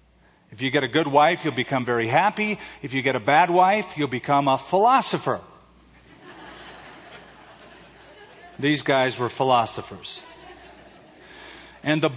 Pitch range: 130-175 Hz